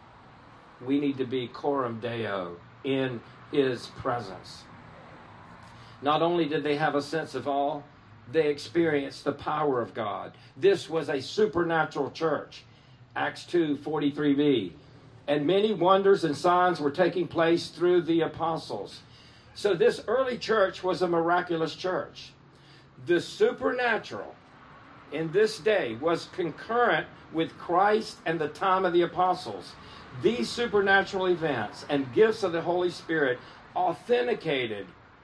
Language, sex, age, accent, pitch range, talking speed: English, male, 50-69, American, 140-180 Hz, 130 wpm